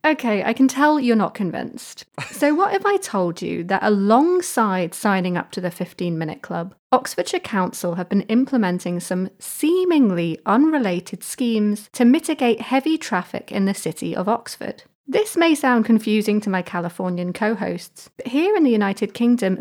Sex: female